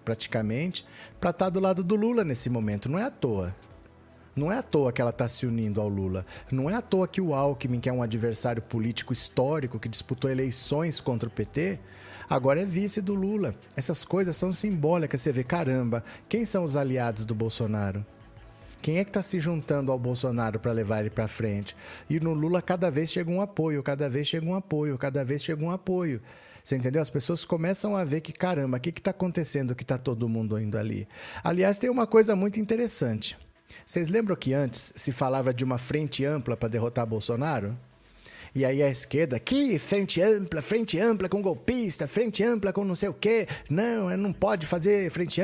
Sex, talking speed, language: male, 205 wpm, Portuguese